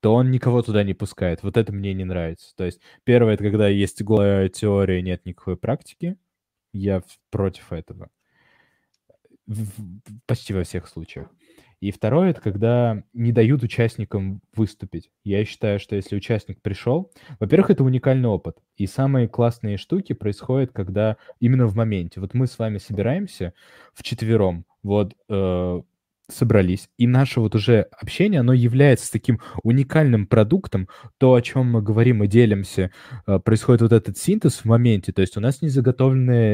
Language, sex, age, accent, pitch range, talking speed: Russian, male, 20-39, native, 100-120 Hz, 150 wpm